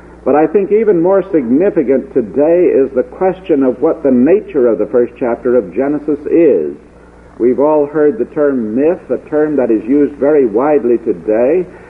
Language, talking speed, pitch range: English, 175 wpm, 115-150 Hz